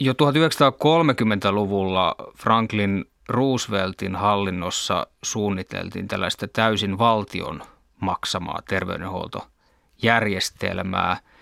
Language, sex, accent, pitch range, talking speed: Finnish, male, native, 95-115 Hz, 60 wpm